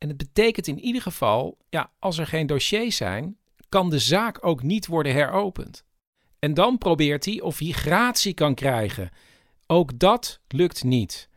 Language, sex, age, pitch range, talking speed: Dutch, male, 50-69, 135-195 Hz, 170 wpm